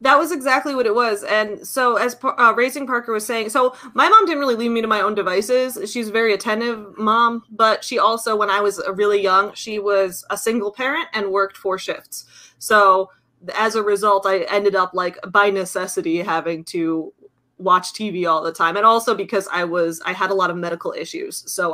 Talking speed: 215 wpm